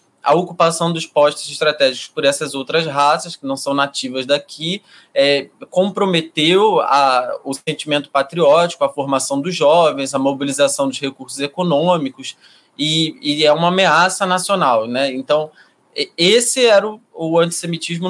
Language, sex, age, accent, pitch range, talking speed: Portuguese, male, 20-39, Brazilian, 145-190 Hz, 135 wpm